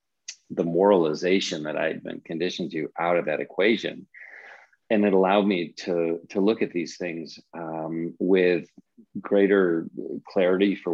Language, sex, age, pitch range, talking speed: English, male, 40-59, 85-100 Hz, 150 wpm